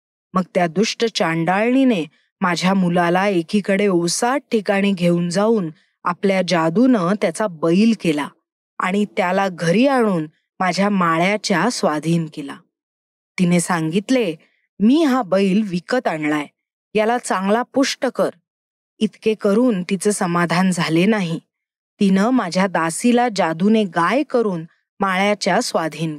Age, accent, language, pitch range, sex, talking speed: 20-39, native, Marathi, 175-245 Hz, female, 110 wpm